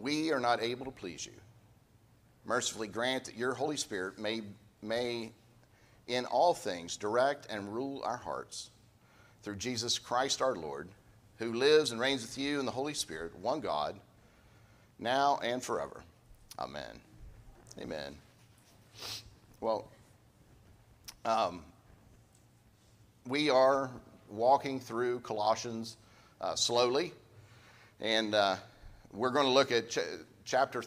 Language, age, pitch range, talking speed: English, 50-69, 110-130 Hz, 120 wpm